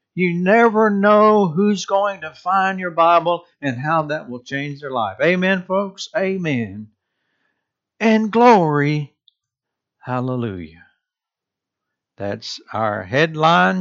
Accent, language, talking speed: American, English, 110 wpm